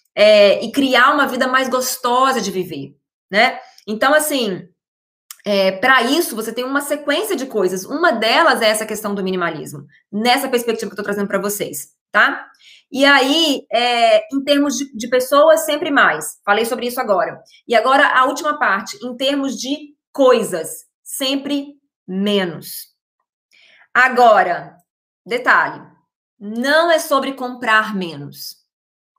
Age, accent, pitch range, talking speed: 20-39, Brazilian, 205-280 Hz, 140 wpm